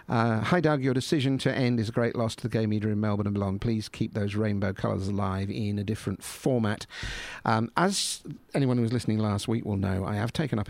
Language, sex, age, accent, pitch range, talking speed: English, male, 50-69, British, 95-115 Hz, 240 wpm